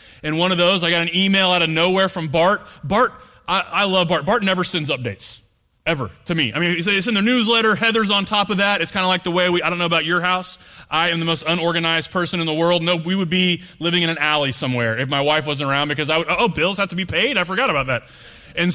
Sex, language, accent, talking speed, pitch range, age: male, English, American, 275 wpm, 150-185 Hz, 30-49